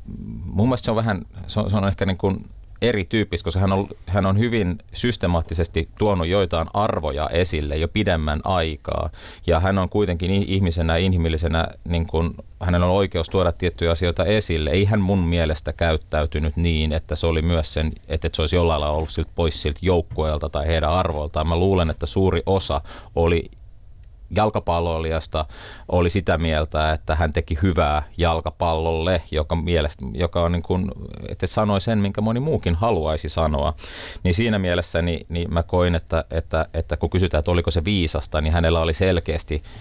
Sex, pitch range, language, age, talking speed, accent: male, 80-95 Hz, Finnish, 30-49, 170 wpm, native